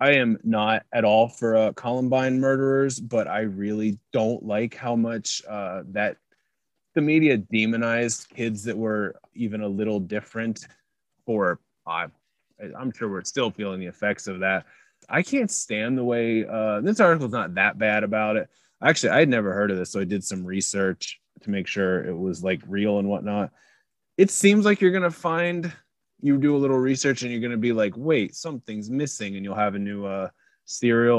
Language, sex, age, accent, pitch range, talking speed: English, male, 20-39, American, 105-130 Hz, 190 wpm